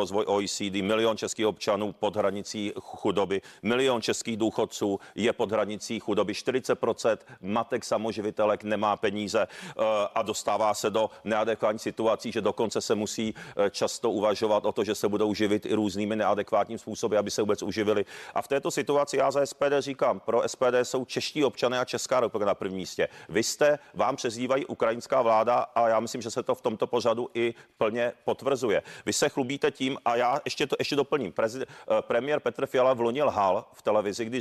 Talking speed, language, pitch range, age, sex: 180 wpm, Czech, 105-130 Hz, 40-59, male